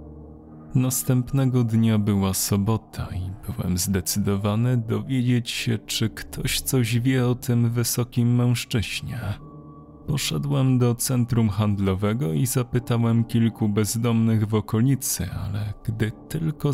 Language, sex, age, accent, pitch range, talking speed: Polish, male, 30-49, native, 100-130 Hz, 110 wpm